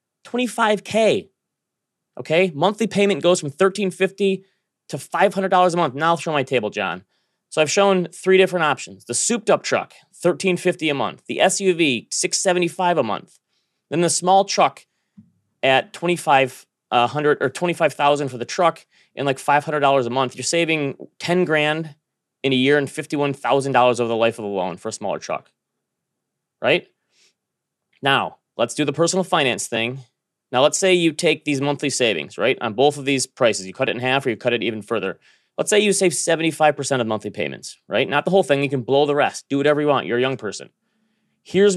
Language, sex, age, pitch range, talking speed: English, male, 30-49, 130-180 Hz, 185 wpm